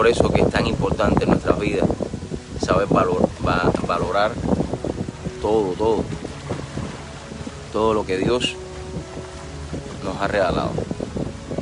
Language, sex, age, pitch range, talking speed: English, male, 30-49, 95-115 Hz, 120 wpm